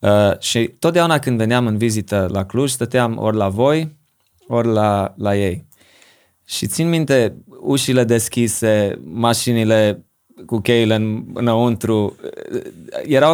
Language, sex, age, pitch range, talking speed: Romanian, male, 20-39, 100-125 Hz, 125 wpm